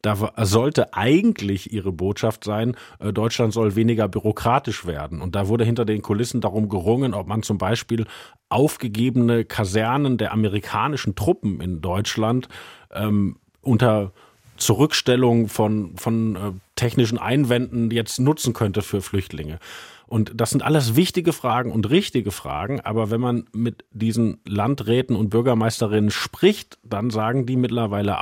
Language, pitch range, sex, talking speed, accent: German, 105-125 Hz, male, 140 wpm, German